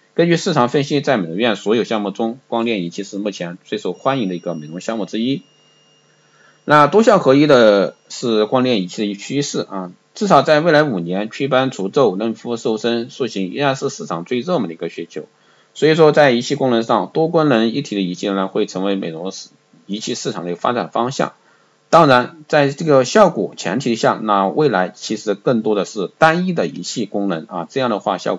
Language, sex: Chinese, male